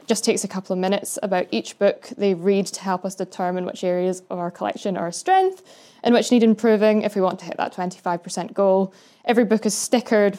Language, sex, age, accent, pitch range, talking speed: English, female, 10-29, British, 185-220 Hz, 225 wpm